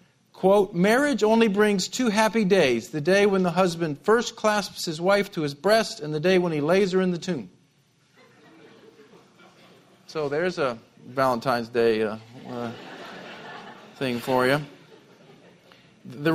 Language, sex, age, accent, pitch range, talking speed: English, male, 50-69, American, 140-195 Hz, 145 wpm